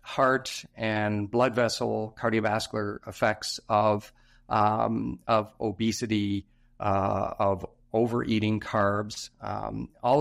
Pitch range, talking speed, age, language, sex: 105-120 Hz, 95 wpm, 50-69, English, male